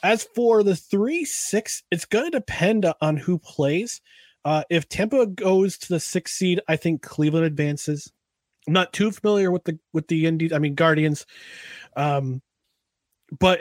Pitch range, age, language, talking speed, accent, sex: 135-190 Hz, 30-49, English, 165 wpm, American, male